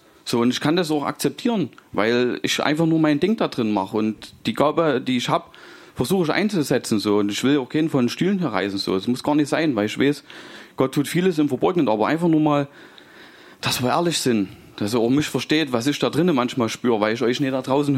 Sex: male